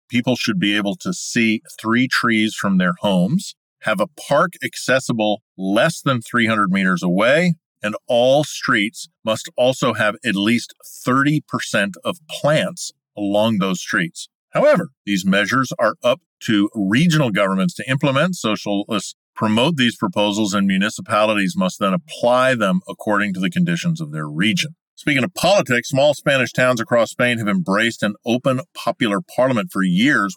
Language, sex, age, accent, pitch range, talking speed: English, male, 40-59, American, 100-150 Hz, 155 wpm